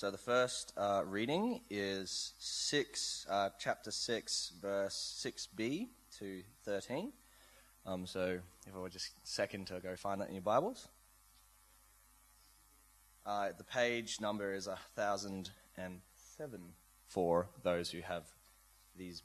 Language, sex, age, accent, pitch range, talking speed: English, male, 20-39, Australian, 95-125 Hz, 130 wpm